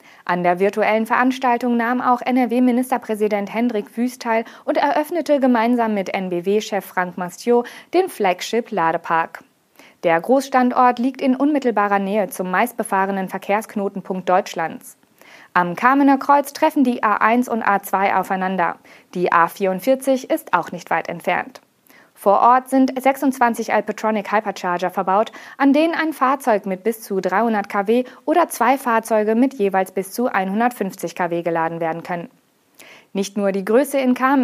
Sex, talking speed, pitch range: female, 140 wpm, 190-255 Hz